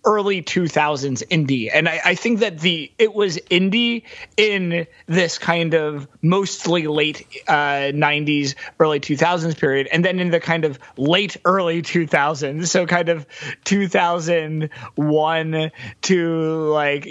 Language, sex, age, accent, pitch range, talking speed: English, male, 30-49, American, 150-180 Hz, 150 wpm